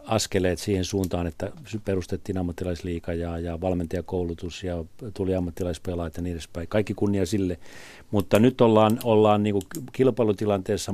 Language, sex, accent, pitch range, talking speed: Finnish, male, native, 95-120 Hz, 125 wpm